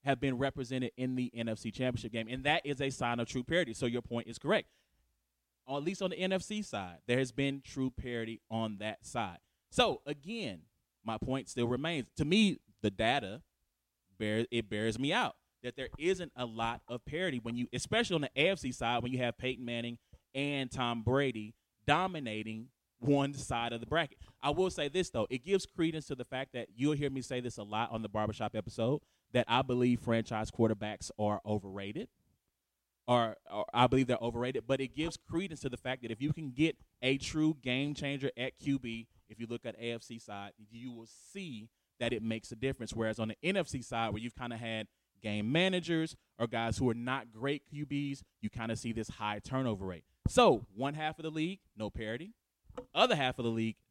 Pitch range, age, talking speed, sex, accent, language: 110-140 Hz, 20-39, 210 wpm, male, American, English